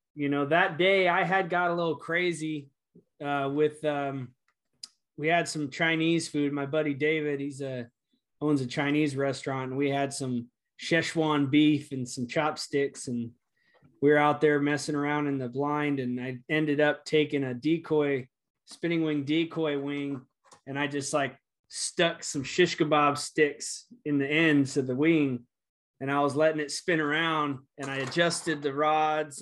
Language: English